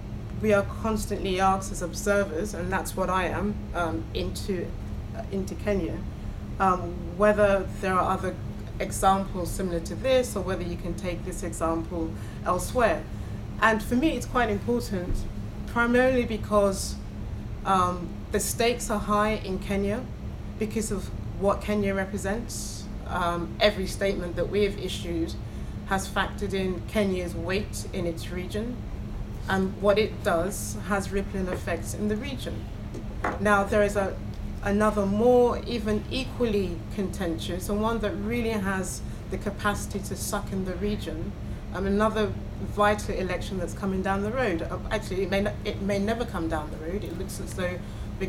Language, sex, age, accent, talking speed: English, female, 30-49, British, 155 wpm